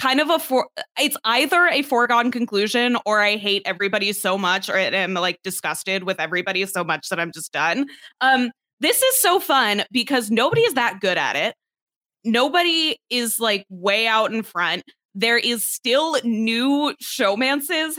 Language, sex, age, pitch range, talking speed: English, female, 20-39, 185-265 Hz, 175 wpm